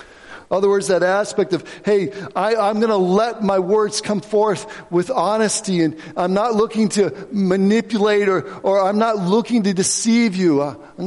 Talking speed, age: 180 wpm, 60-79